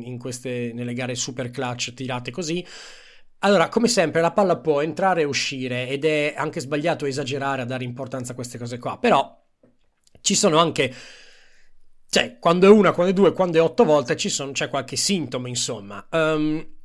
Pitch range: 135-180 Hz